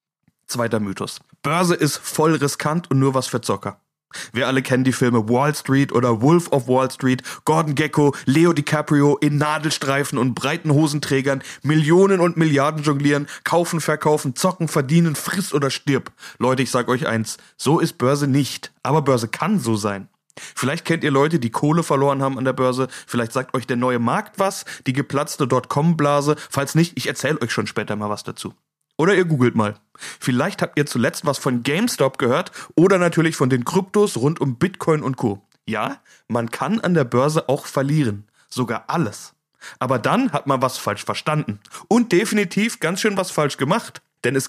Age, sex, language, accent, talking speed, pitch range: 30-49, male, German, German, 185 wpm, 125-165 Hz